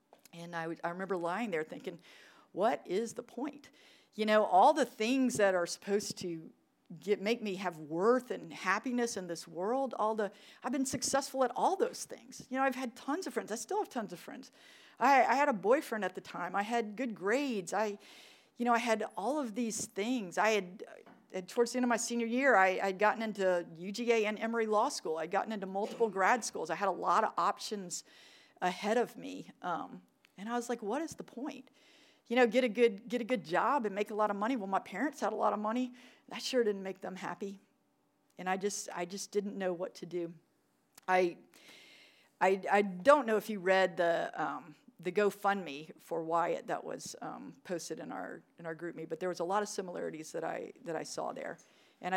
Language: English